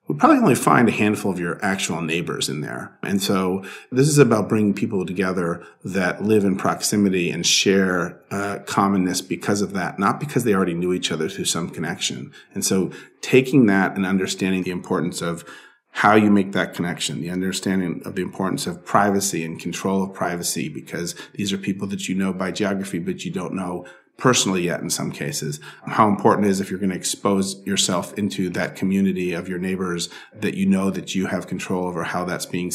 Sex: male